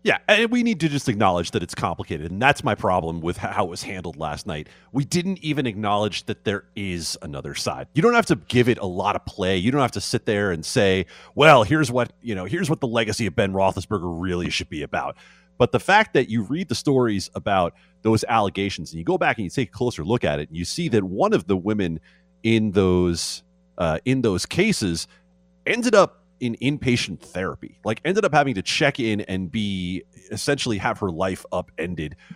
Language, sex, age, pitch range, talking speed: English, male, 30-49, 95-150 Hz, 225 wpm